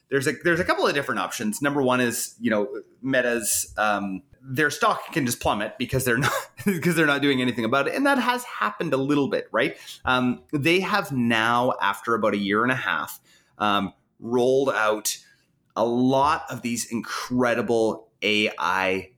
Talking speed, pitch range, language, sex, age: 180 wpm, 120-165 Hz, English, male, 30-49